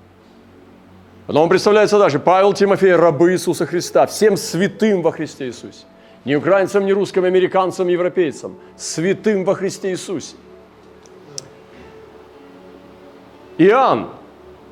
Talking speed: 105 wpm